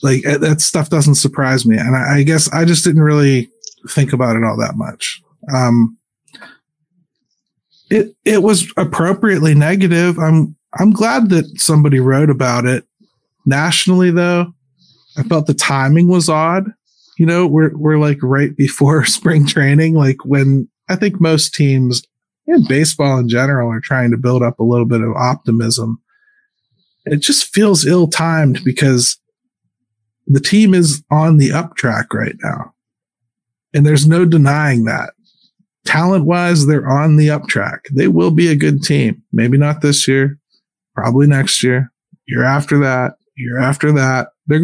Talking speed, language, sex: 155 wpm, English, male